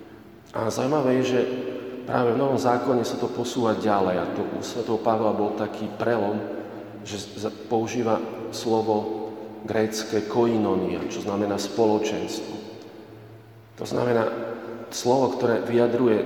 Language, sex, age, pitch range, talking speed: Slovak, male, 40-59, 105-120 Hz, 120 wpm